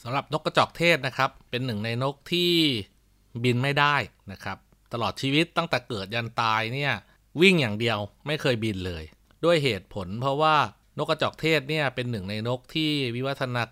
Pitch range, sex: 105-140 Hz, male